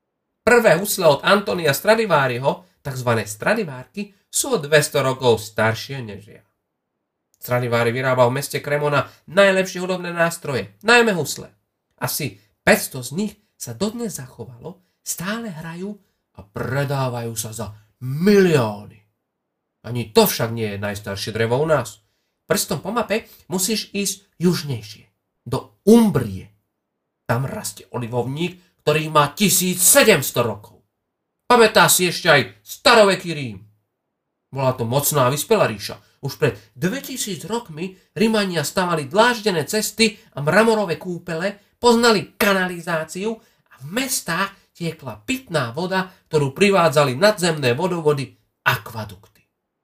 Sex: male